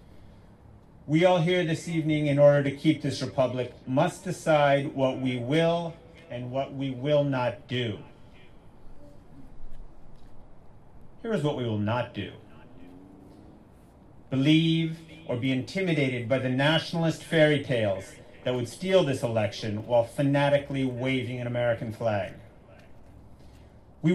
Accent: American